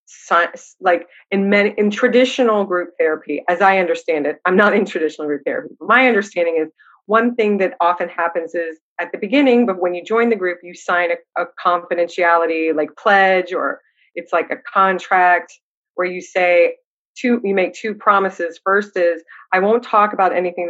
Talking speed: 180 wpm